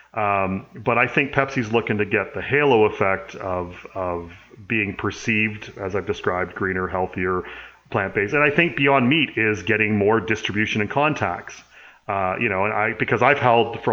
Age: 30-49